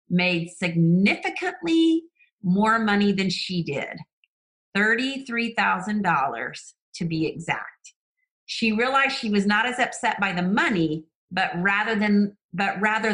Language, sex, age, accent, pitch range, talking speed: English, female, 40-59, American, 165-205 Hz, 110 wpm